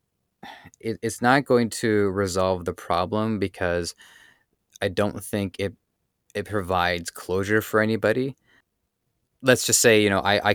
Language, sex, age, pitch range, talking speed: English, male, 20-39, 90-105 Hz, 140 wpm